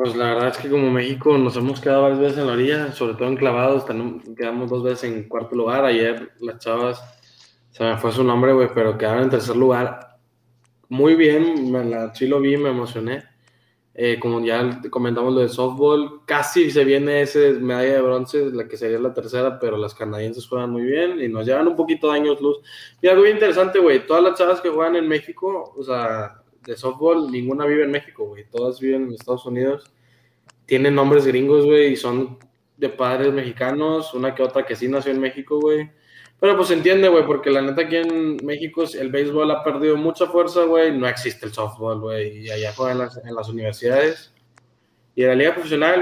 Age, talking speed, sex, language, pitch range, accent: 20-39, 205 wpm, male, Spanish, 125-160 Hz, Mexican